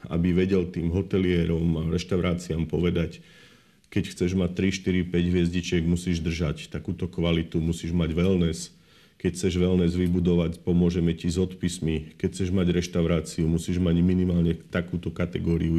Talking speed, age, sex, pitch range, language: 145 wpm, 40-59, male, 85-100 Hz, Slovak